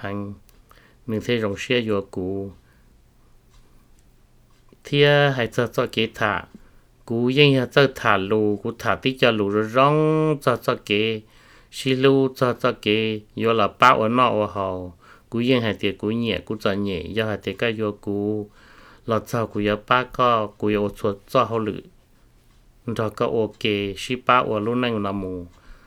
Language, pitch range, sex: English, 105-125 Hz, male